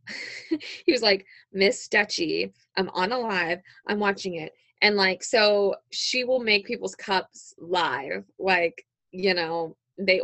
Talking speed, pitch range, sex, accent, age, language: 145 wpm, 180-235 Hz, female, American, 20-39, English